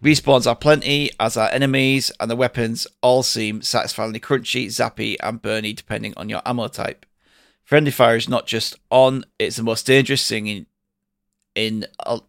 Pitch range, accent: 110-130 Hz, British